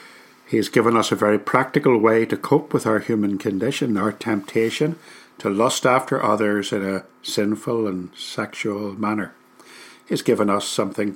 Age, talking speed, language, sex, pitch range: 60-79, 160 wpm, English, male, 95-115 Hz